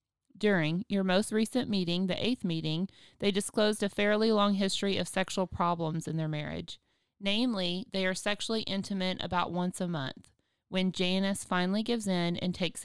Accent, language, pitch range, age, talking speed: American, English, 175-205 Hz, 30-49, 170 wpm